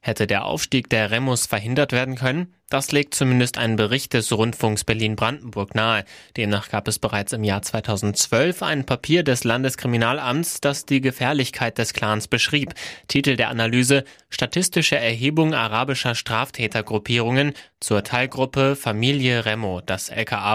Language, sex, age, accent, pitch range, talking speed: German, male, 20-39, German, 115-140 Hz, 135 wpm